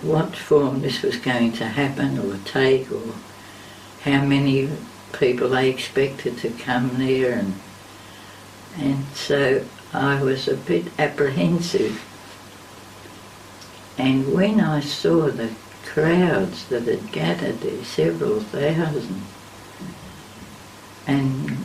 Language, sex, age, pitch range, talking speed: English, female, 60-79, 100-160 Hz, 110 wpm